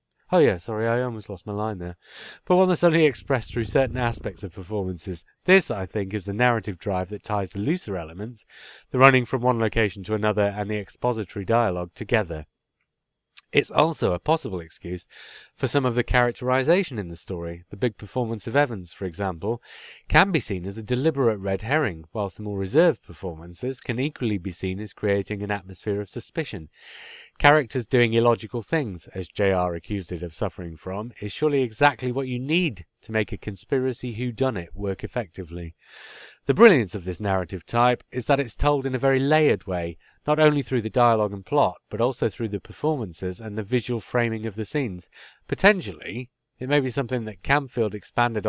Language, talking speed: English, 190 wpm